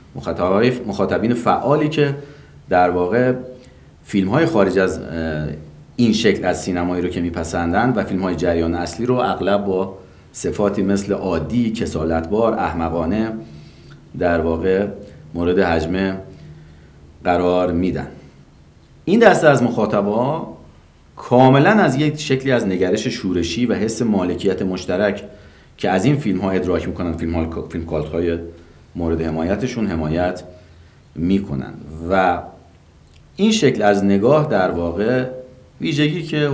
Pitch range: 85-120 Hz